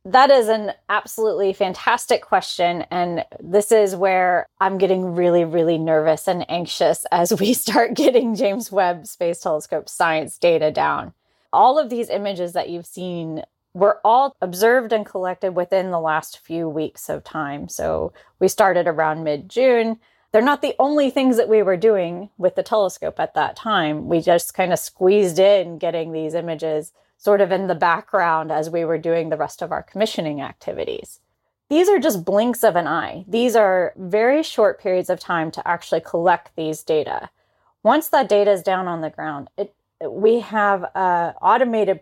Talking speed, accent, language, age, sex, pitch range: 175 wpm, American, English, 20-39, female, 170-210 Hz